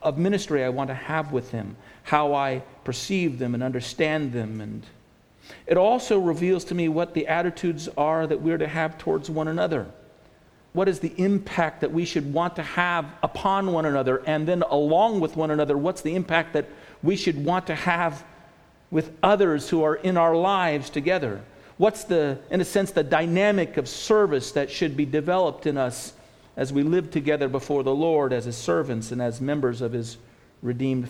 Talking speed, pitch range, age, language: 190 wpm, 135-175 Hz, 50-69, English